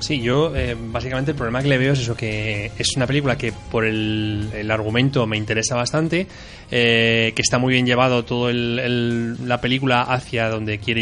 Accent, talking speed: Spanish, 200 wpm